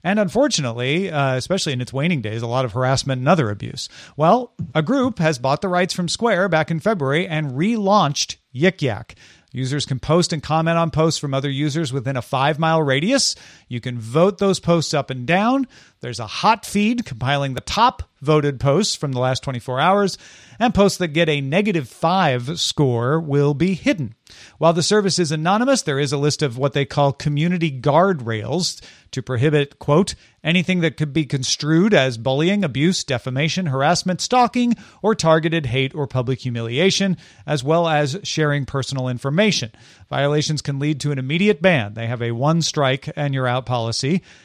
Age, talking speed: 40-59, 180 wpm